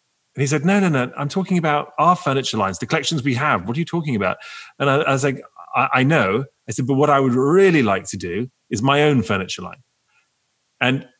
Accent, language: British, English